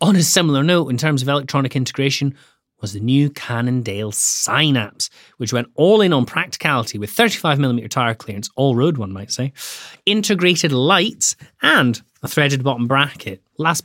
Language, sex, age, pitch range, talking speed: English, male, 30-49, 115-145 Hz, 160 wpm